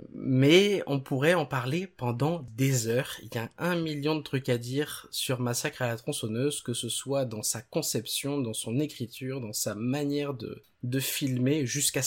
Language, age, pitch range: French, 20-39, 120-145 Hz